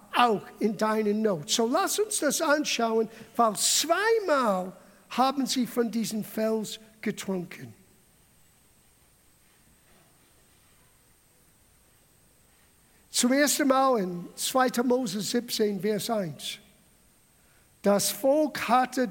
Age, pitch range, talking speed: 50-69, 215-275 Hz, 90 wpm